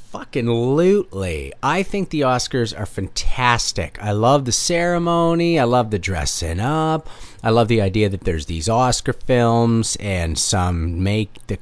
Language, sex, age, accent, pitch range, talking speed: English, male, 40-59, American, 105-160 Hz, 145 wpm